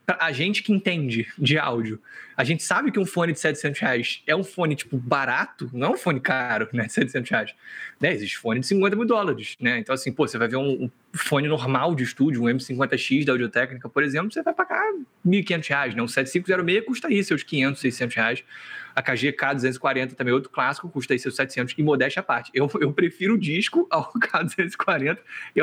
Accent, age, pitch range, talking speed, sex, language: Brazilian, 20-39, 130-195 Hz, 215 wpm, male, Portuguese